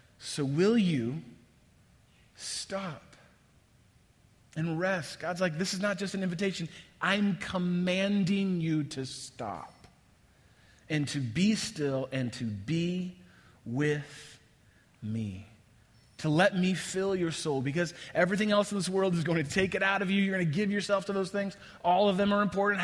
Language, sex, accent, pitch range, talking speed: English, male, American, 130-205 Hz, 160 wpm